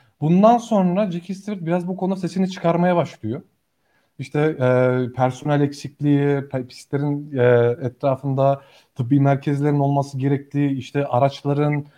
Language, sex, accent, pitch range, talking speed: Turkish, male, native, 135-180 Hz, 115 wpm